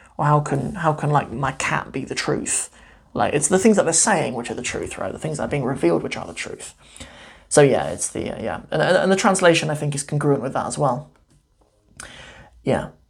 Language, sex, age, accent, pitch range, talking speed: English, male, 20-39, British, 145-185 Hz, 245 wpm